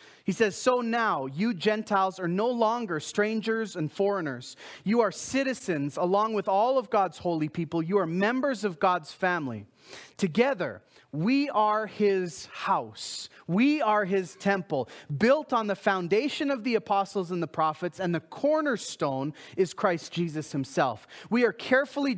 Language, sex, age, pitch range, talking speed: English, male, 30-49, 160-225 Hz, 155 wpm